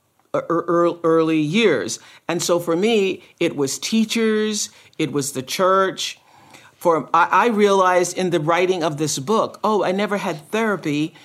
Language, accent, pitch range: English, American, 165-195 Hz